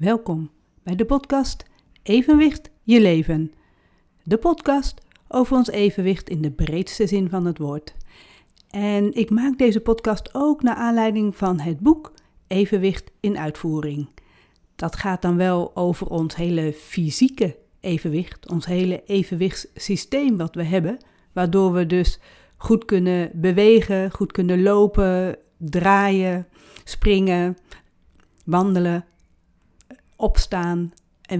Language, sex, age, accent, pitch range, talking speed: Dutch, female, 40-59, Dutch, 170-225 Hz, 120 wpm